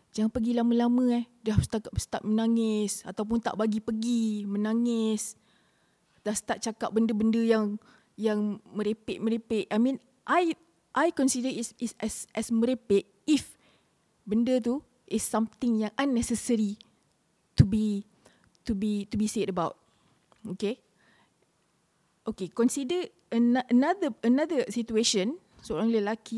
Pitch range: 220-295 Hz